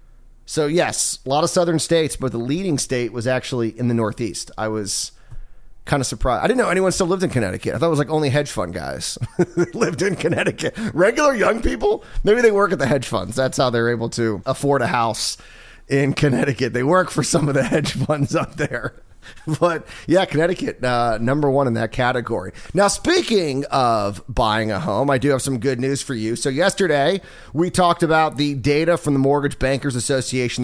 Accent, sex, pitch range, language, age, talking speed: American, male, 120-160 Hz, English, 30-49, 210 wpm